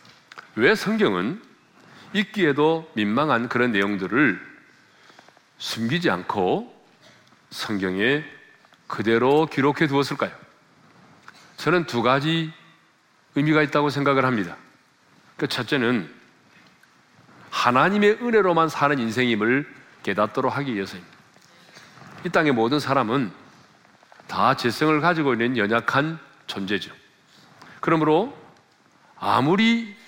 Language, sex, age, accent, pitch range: Korean, male, 40-59, native, 120-200 Hz